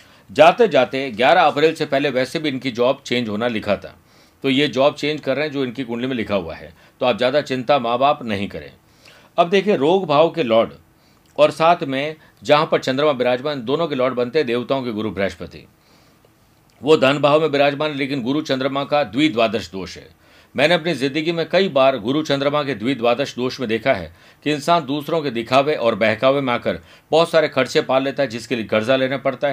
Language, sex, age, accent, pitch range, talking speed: Hindi, male, 50-69, native, 125-150 Hz, 210 wpm